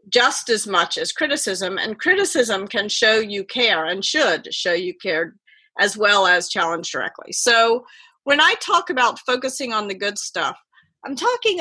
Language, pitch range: English, 195-285 Hz